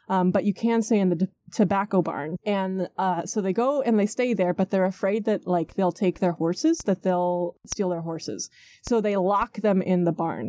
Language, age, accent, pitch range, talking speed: English, 20-39, American, 185-235 Hz, 230 wpm